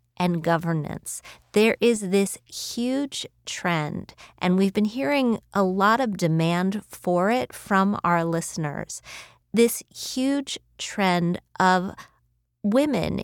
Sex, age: female, 40-59